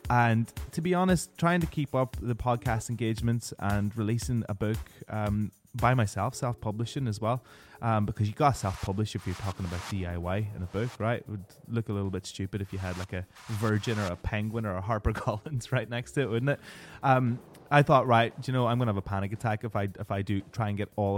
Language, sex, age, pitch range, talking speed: English, male, 20-39, 105-125 Hz, 240 wpm